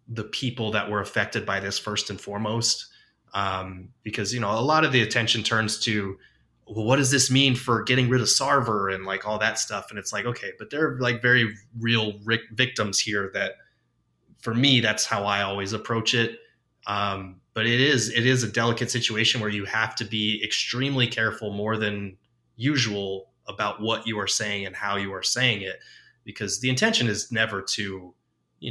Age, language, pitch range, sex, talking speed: 20-39, English, 100-120 Hz, male, 195 wpm